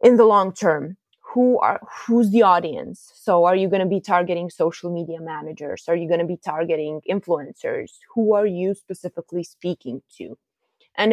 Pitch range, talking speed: 170-215 Hz, 180 wpm